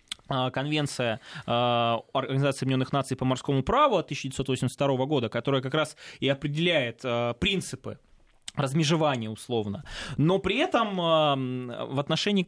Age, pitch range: 20-39, 125-155 Hz